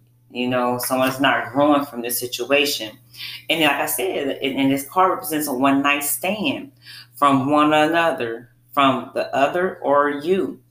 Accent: American